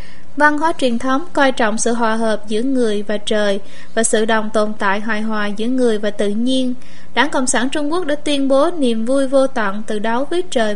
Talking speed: 230 wpm